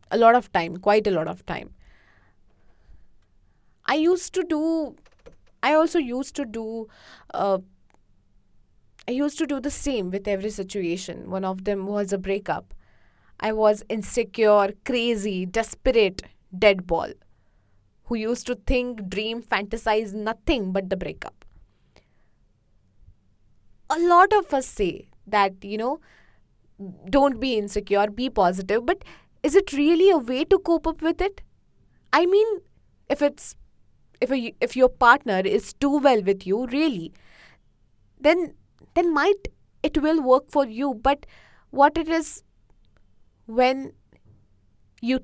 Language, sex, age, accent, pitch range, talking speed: English, female, 20-39, Indian, 175-270 Hz, 140 wpm